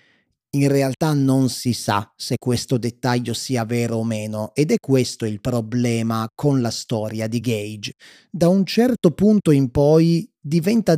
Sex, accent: male, native